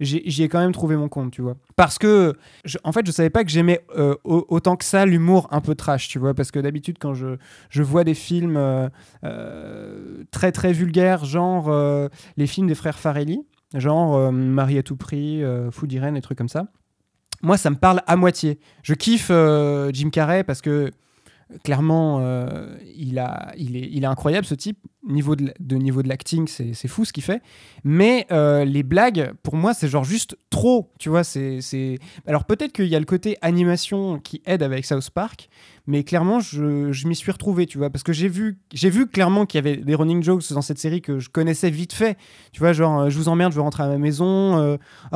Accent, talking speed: French, 225 wpm